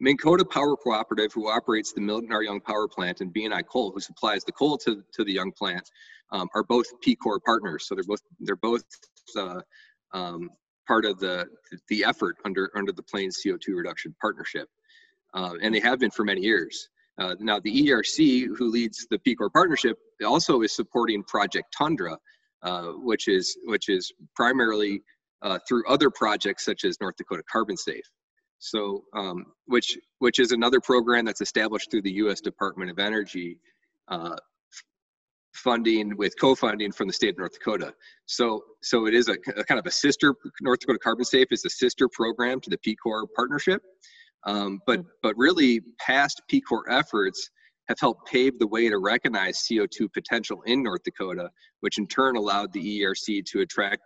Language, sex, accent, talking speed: English, male, American, 180 wpm